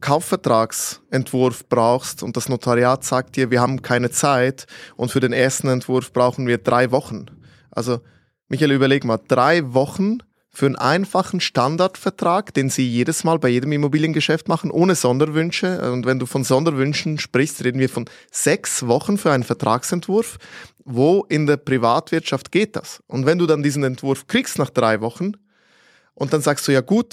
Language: German